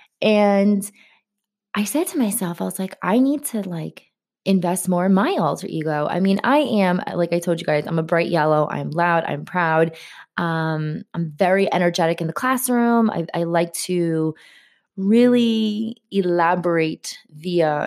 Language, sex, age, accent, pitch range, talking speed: English, female, 20-39, American, 170-220 Hz, 165 wpm